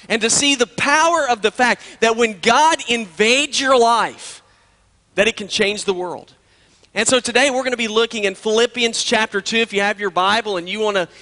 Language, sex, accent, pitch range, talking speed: English, male, American, 200-240 Hz, 215 wpm